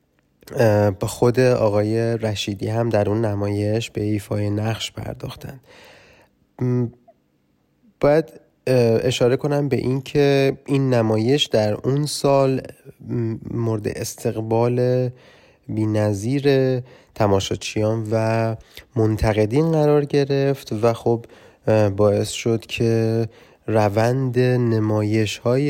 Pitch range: 110-135 Hz